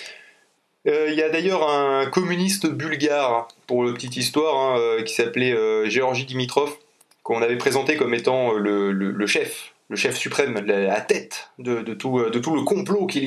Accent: French